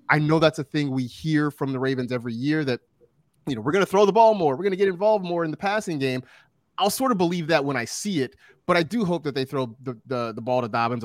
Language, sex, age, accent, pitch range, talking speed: English, male, 30-49, American, 120-155 Hz, 295 wpm